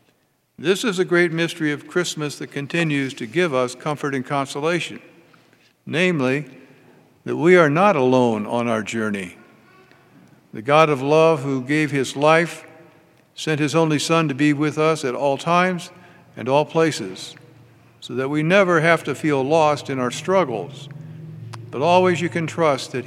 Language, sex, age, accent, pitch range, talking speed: English, male, 60-79, American, 135-170 Hz, 165 wpm